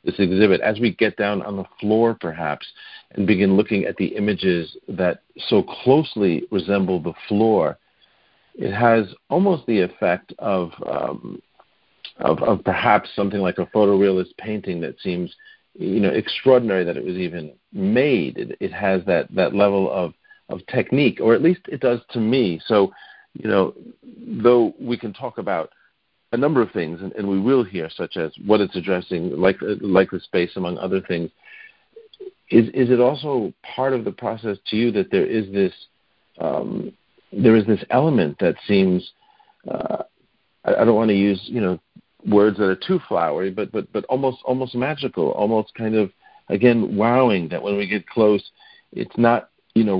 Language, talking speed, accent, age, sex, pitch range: English, 175 wpm, American, 50-69, male, 95-125 Hz